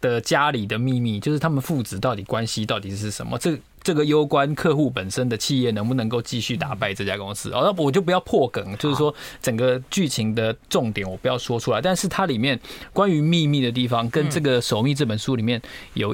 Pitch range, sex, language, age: 120-155 Hz, male, Chinese, 20-39